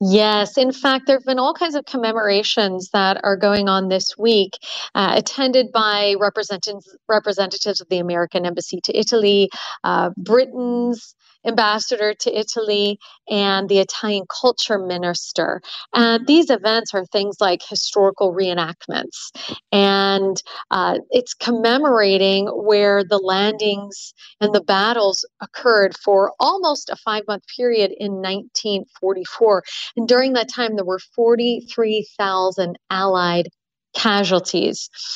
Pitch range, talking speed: 195-235 Hz, 120 wpm